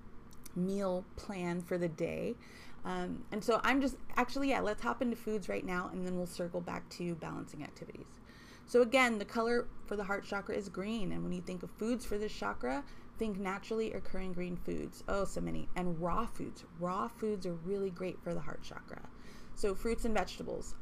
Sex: female